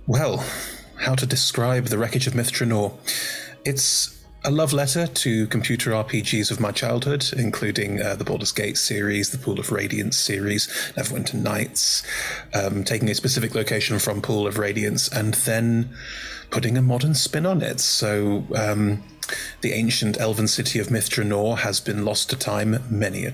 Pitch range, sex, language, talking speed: 105-130 Hz, male, English, 160 wpm